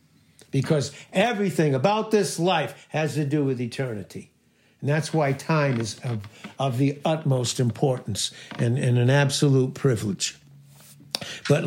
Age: 60-79